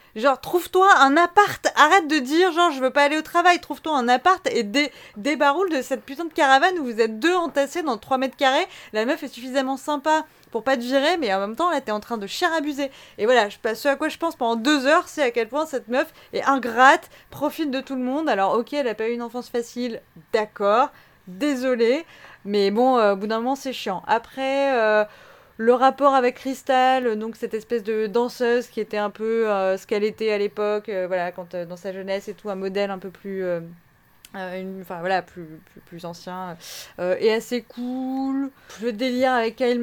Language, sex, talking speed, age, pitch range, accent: French, female, 225 wpm, 20-39, 205-275 Hz, French